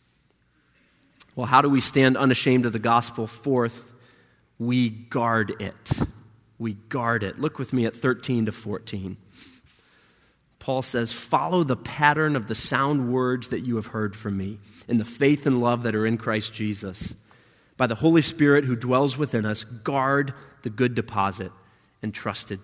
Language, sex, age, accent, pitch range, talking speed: English, male, 30-49, American, 110-135 Hz, 160 wpm